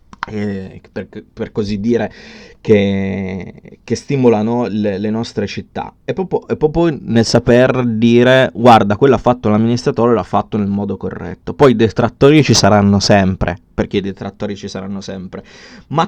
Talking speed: 150 wpm